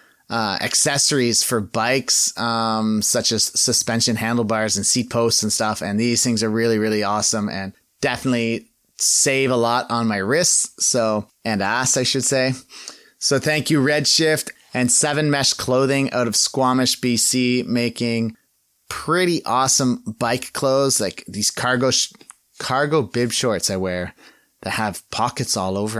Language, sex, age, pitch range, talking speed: English, male, 30-49, 100-125 Hz, 150 wpm